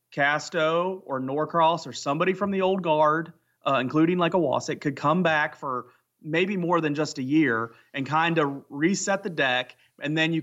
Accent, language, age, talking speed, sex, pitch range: American, English, 30-49, 190 wpm, male, 130-155 Hz